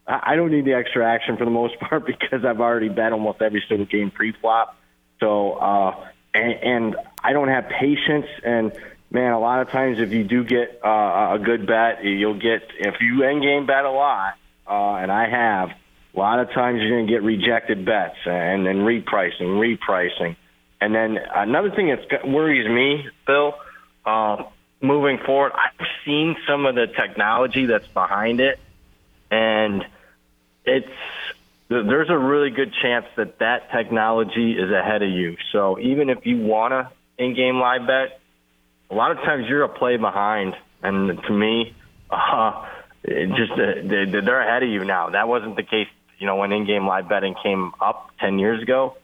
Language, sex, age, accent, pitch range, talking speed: English, male, 30-49, American, 100-130 Hz, 180 wpm